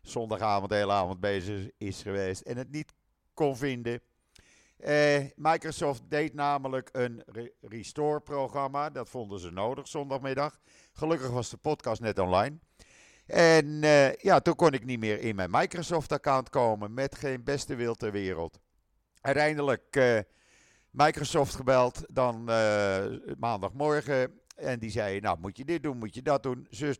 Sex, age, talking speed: male, 50-69, 155 wpm